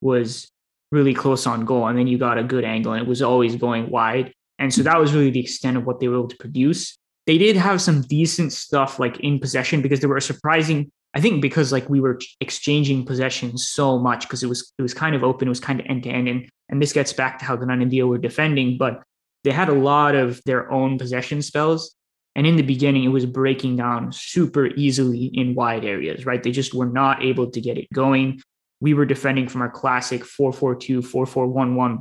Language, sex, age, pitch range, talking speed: English, male, 20-39, 125-140 Hz, 230 wpm